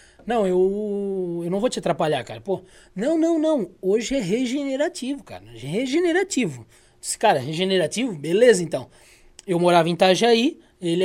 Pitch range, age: 195-275 Hz, 20-39